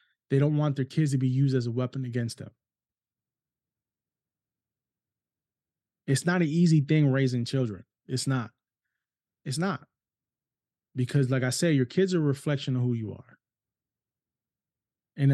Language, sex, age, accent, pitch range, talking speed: English, male, 20-39, American, 125-145 Hz, 150 wpm